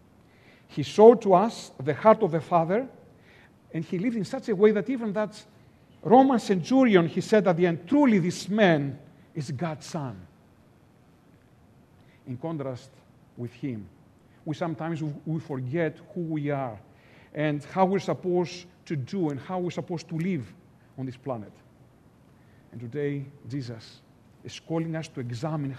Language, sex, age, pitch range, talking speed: English, male, 50-69, 140-185 Hz, 155 wpm